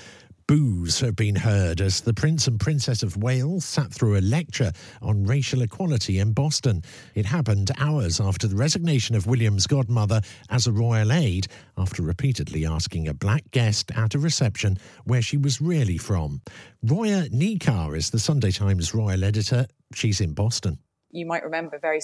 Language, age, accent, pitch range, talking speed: English, 50-69, British, 105-150 Hz, 170 wpm